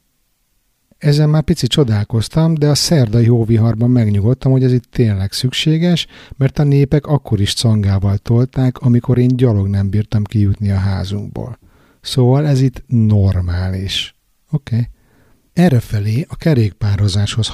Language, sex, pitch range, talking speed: Hungarian, male, 100-130 Hz, 130 wpm